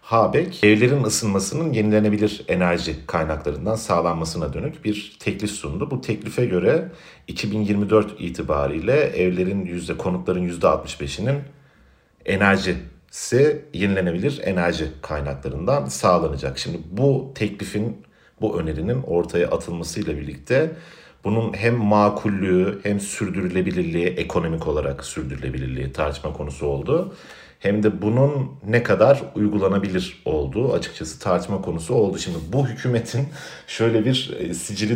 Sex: male